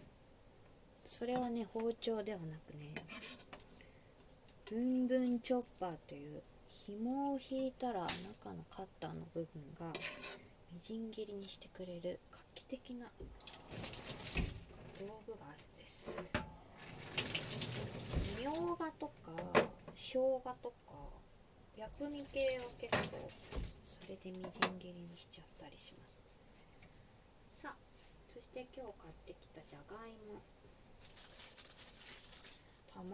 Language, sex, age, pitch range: Japanese, female, 20-39, 175-260 Hz